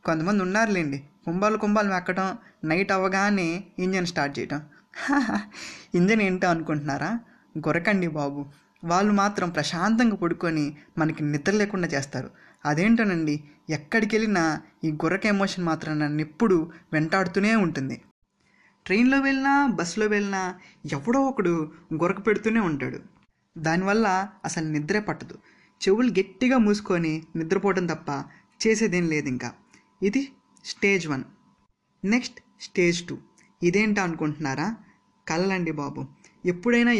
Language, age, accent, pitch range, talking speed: Telugu, 20-39, native, 160-205 Hz, 105 wpm